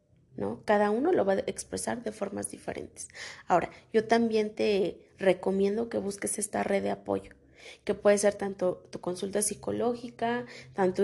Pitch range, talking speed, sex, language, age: 185-230 Hz, 160 wpm, female, Spanish, 30-49